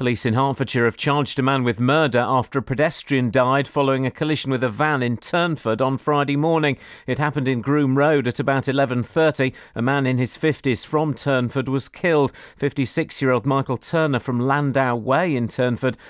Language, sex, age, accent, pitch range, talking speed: English, male, 40-59, British, 125-145 Hz, 185 wpm